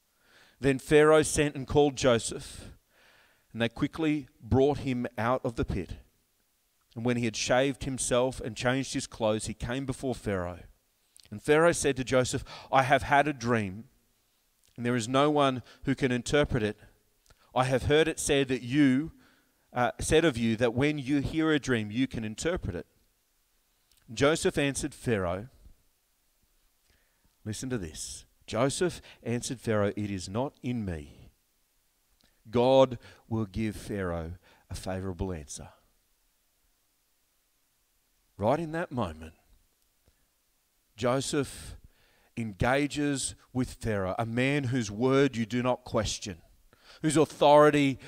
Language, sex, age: English, male, 40-59